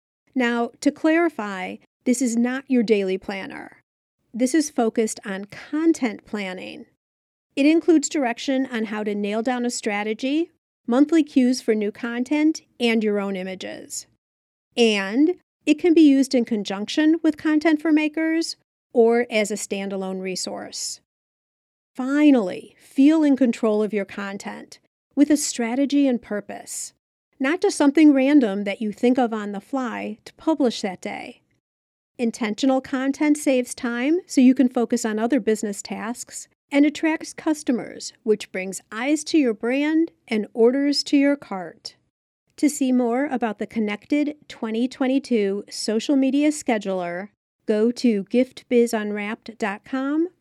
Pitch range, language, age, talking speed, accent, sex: 220-290 Hz, English, 40-59, 140 wpm, American, female